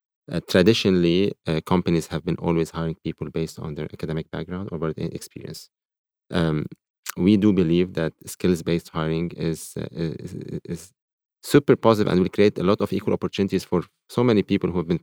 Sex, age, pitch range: male, 30-49, 80-90 Hz